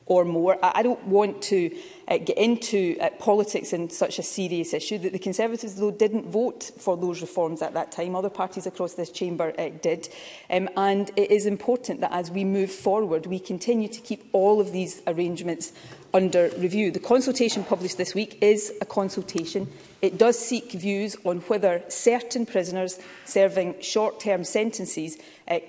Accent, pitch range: British, 180-210 Hz